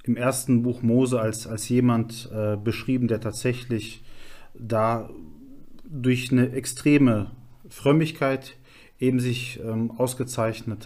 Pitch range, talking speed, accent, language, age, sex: 110-130 Hz, 110 wpm, German, German, 40-59, male